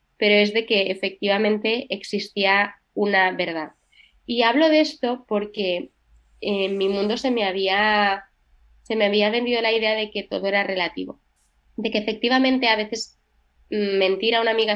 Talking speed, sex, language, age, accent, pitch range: 160 wpm, female, Spanish, 20-39, Spanish, 185-225 Hz